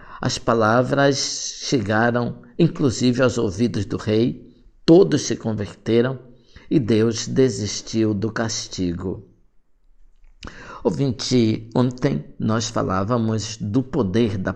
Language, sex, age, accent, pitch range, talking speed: Portuguese, male, 60-79, Brazilian, 105-140 Hz, 95 wpm